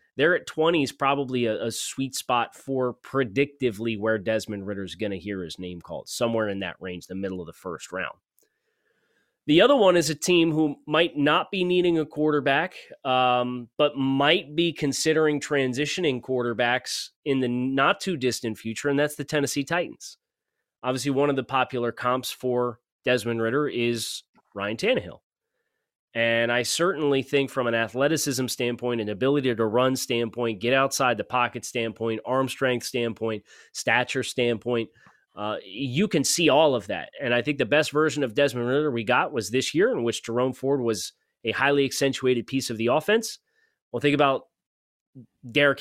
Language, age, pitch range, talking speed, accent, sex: English, 30-49, 115-145 Hz, 175 wpm, American, male